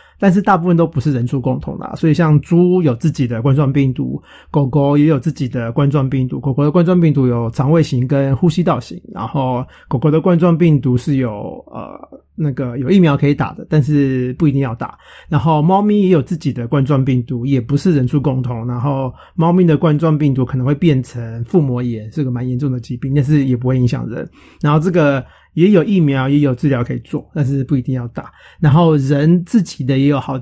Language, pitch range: Chinese, 130-160 Hz